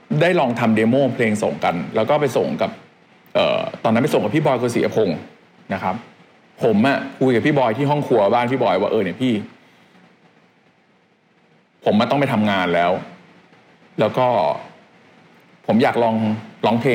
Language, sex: Thai, male